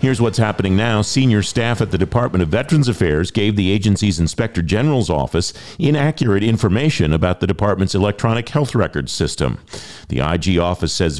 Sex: male